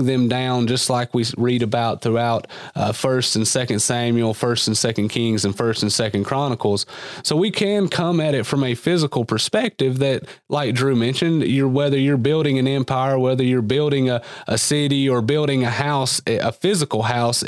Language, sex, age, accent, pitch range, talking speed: English, male, 30-49, American, 115-135 Hz, 190 wpm